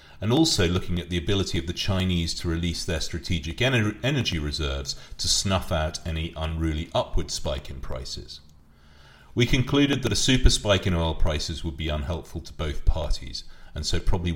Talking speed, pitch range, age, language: 175 wpm, 80-105 Hz, 40-59, English